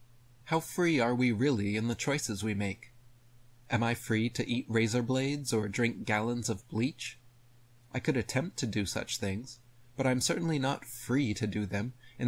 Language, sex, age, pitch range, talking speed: English, male, 30-49, 110-130 Hz, 185 wpm